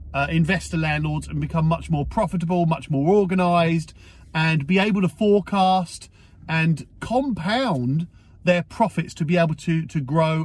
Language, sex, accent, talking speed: English, male, British, 150 wpm